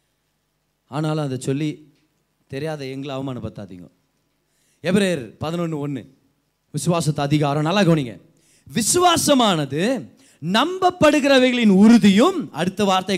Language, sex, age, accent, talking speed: Tamil, male, 30-49, native, 85 wpm